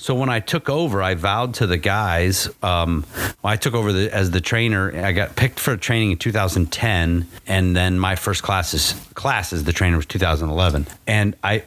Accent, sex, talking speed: American, male, 185 wpm